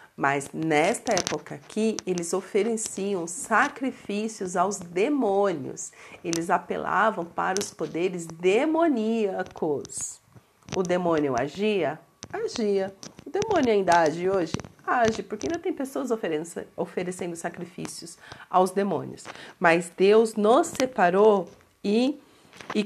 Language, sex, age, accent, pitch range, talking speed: Portuguese, female, 40-59, Brazilian, 175-215 Hz, 100 wpm